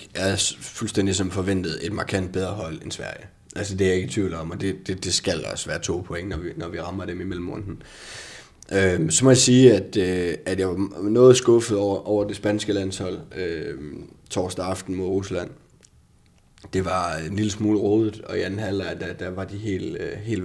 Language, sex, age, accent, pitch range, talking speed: Danish, male, 20-39, native, 90-105 Hz, 215 wpm